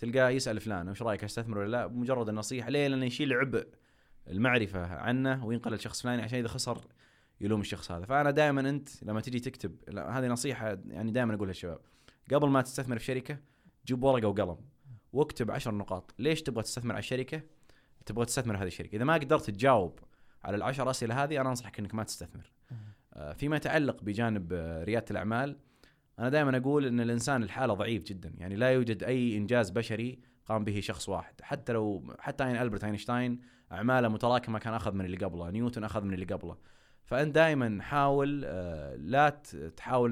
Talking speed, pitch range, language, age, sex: 175 wpm, 105-130 Hz, Arabic, 20-39, male